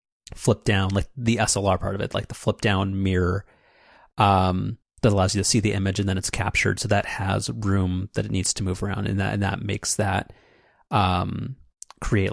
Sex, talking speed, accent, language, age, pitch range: male, 210 wpm, American, English, 30-49, 100-115 Hz